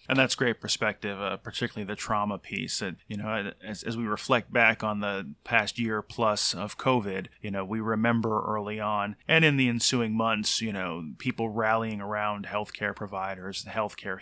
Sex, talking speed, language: male, 180 wpm, English